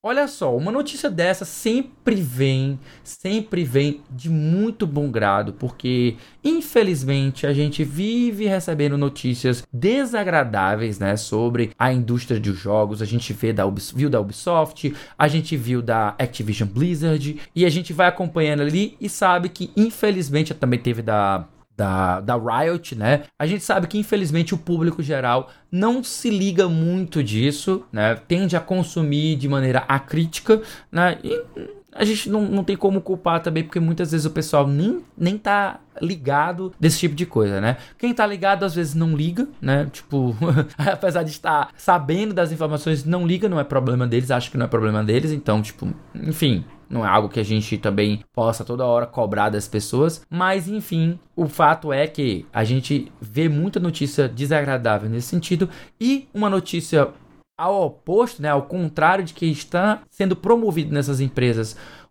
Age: 20-39